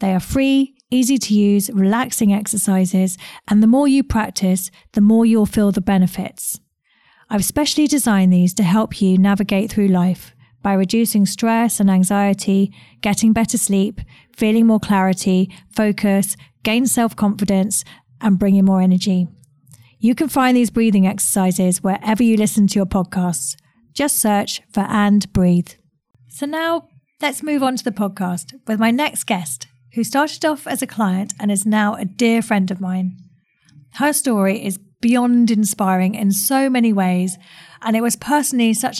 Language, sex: English, female